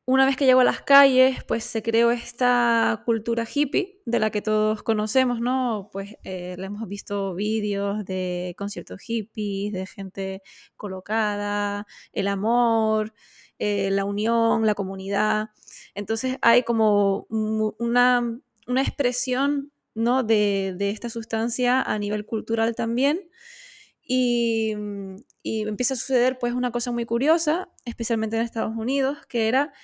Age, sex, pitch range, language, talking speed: 10-29, female, 205-250 Hz, Spanish, 135 wpm